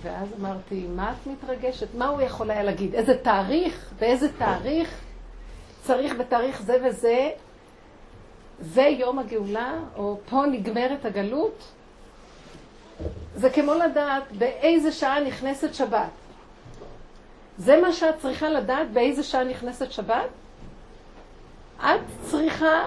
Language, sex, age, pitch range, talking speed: Hebrew, female, 50-69, 220-290 Hz, 115 wpm